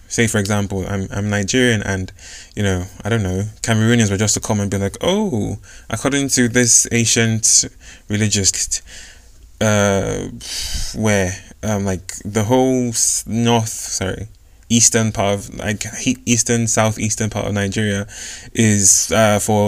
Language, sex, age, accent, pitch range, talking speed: English, male, 20-39, British, 95-115 Hz, 145 wpm